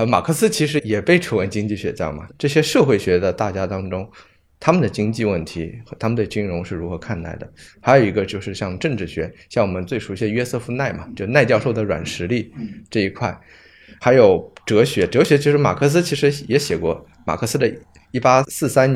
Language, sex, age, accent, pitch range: Chinese, male, 20-39, native, 95-135 Hz